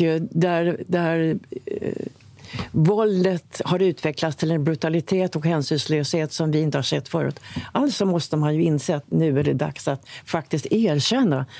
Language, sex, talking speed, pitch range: Swedish, female, 150 wpm, 145-180 Hz